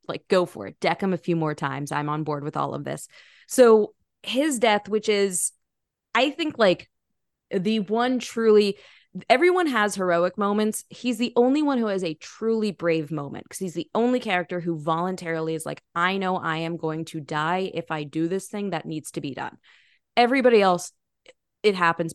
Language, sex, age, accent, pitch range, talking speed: English, female, 20-39, American, 160-210 Hz, 195 wpm